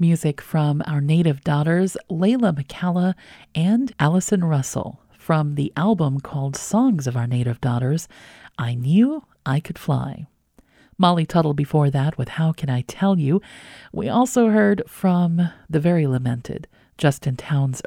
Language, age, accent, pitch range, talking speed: English, 40-59, American, 135-180 Hz, 145 wpm